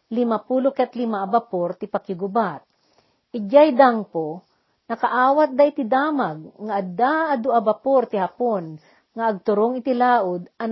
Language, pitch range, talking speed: Filipino, 200-255 Hz, 130 wpm